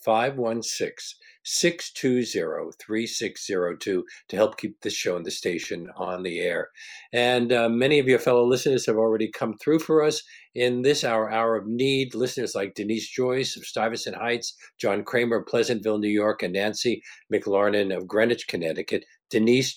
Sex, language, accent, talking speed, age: male, English, American, 155 wpm, 50-69